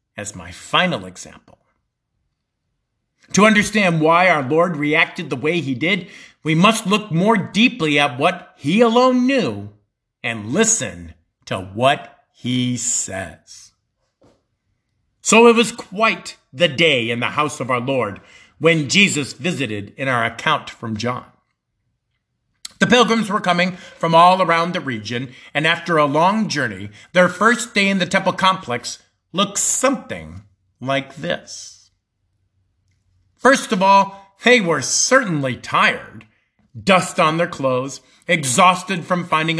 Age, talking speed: 50-69, 135 wpm